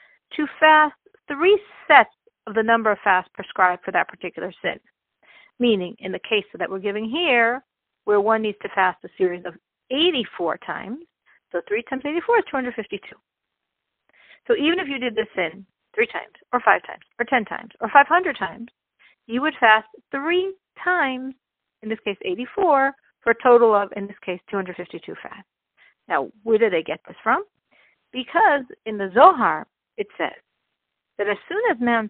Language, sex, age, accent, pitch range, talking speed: English, female, 50-69, American, 205-295 Hz, 170 wpm